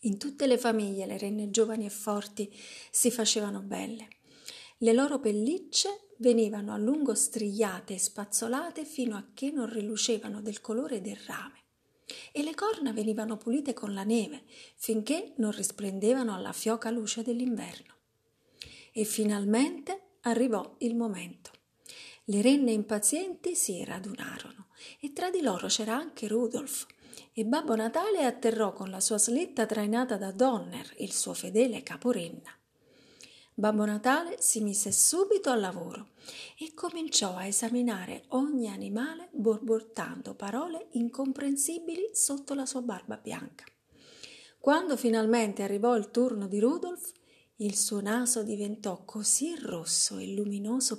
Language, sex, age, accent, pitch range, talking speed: Italian, female, 40-59, native, 210-260 Hz, 135 wpm